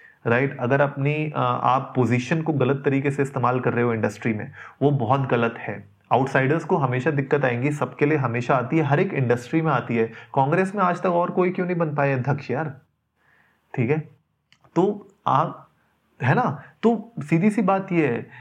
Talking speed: 200 wpm